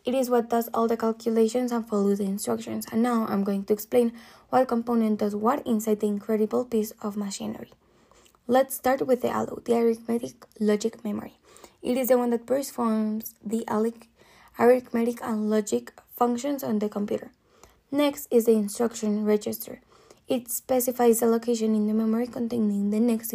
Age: 10-29